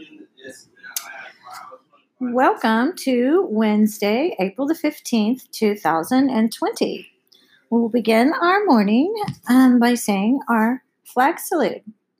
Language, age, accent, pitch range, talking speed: English, 40-59, American, 210-285 Hz, 85 wpm